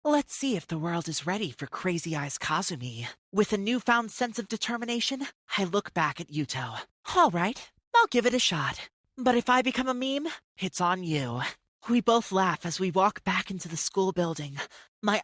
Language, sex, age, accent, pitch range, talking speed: English, male, 30-49, American, 165-235 Hz, 195 wpm